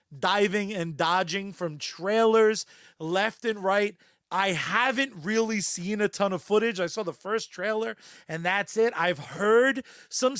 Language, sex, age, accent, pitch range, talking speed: English, male, 30-49, American, 175-250 Hz, 155 wpm